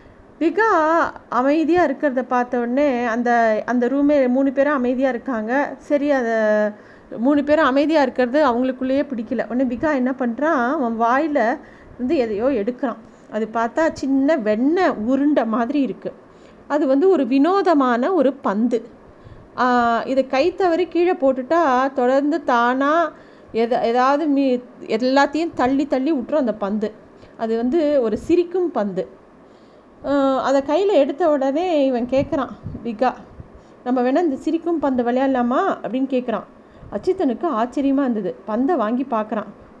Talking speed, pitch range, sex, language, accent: 125 wpm, 240-300 Hz, female, Tamil, native